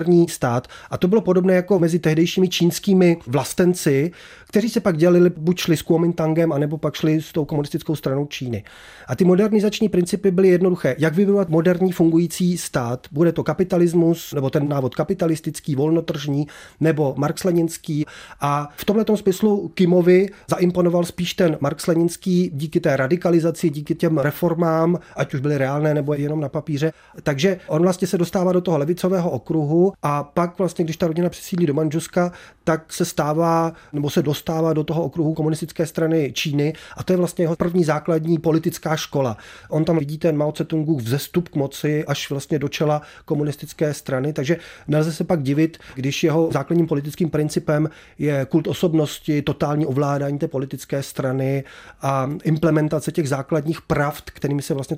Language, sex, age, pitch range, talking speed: Czech, male, 30-49, 150-175 Hz, 165 wpm